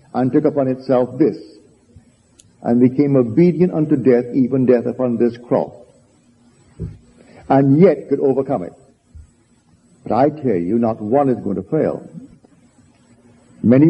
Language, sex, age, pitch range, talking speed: English, male, 60-79, 120-155 Hz, 135 wpm